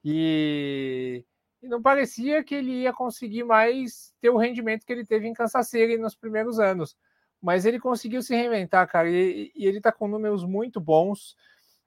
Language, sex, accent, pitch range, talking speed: English, male, Brazilian, 145-210 Hz, 165 wpm